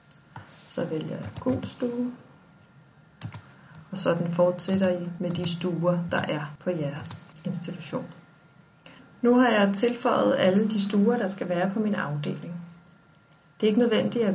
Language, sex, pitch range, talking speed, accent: Danish, female, 175-220 Hz, 145 wpm, native